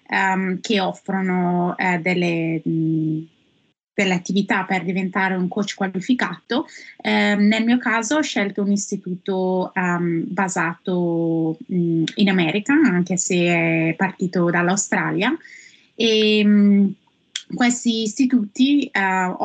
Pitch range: 180-210 Hz